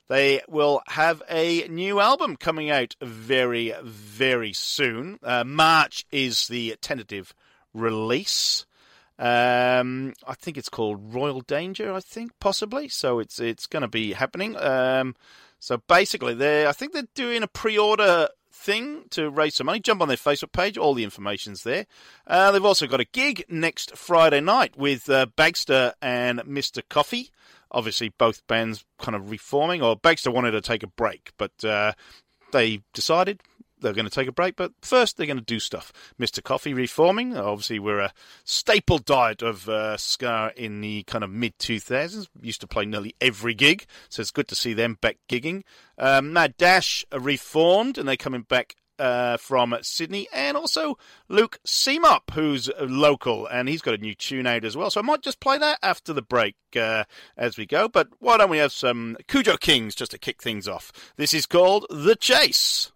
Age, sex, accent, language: 40-59, male, British, English